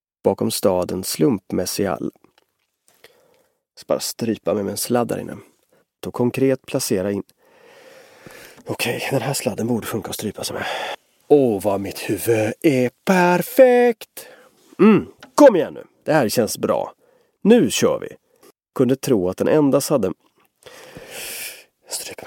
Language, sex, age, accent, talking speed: English, male, 30-49, Swedish, 140 wpm